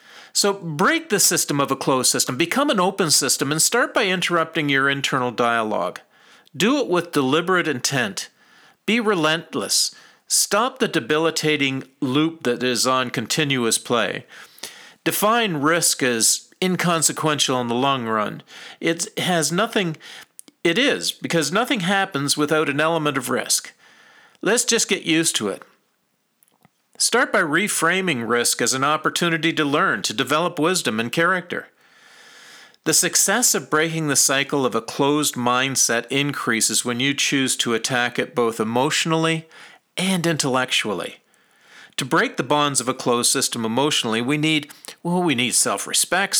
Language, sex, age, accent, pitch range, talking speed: English, male, 50-69, American, 135-175 Hz, 145 wpm